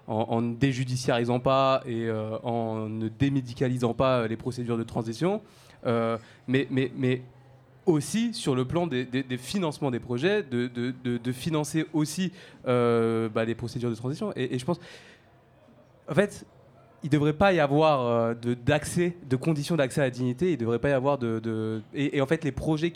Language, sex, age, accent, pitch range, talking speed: French, male, 20-39, French, 120-145 Hz, 190 wpm